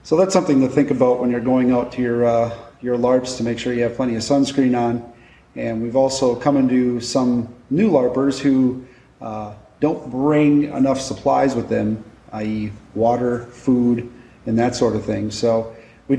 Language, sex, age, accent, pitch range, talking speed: English, male, 30-49, American, 115-135 Hz, 185 wpm